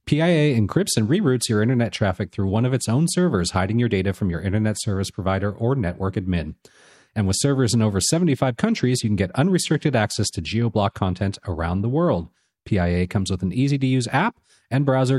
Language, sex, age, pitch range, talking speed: English, male, 40-59, 95-135 Hz, 200 wpm